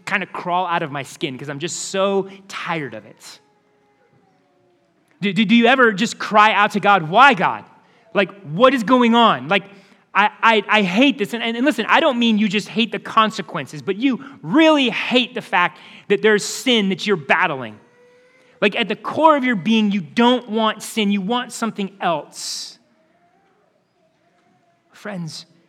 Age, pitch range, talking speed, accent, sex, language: 30-49, 175-230 Hz, 180 wpm, American, male, English